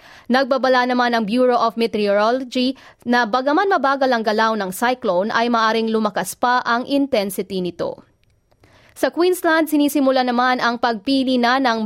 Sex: female